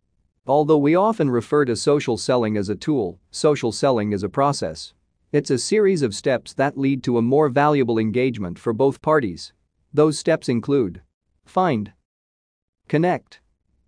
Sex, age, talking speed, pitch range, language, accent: male, 40-59, 150 wpm, 110-150 Hz, English, American